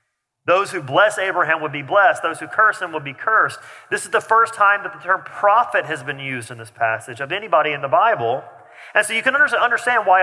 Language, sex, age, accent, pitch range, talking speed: English, male, 40-59, American, 125-180 Hz, 235 wpm